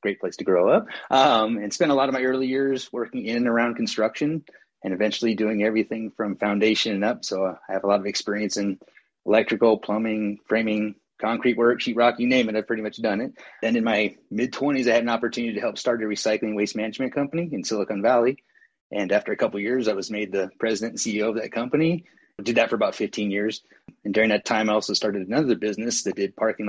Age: 30-49